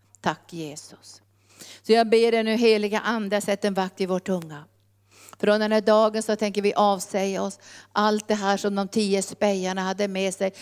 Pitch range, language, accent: 190-210 Hz, Swedish, native